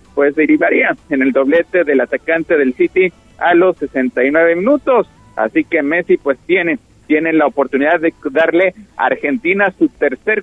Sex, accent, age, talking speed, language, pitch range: male, Mexican, 50-69, 155 wpm, Spanish, 150-210 Hz